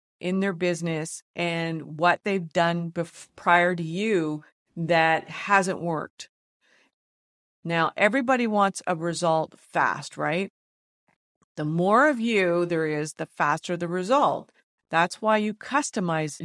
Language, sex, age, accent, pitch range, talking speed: English, female, 50-69, American, 165-210 Hz, 125 wpm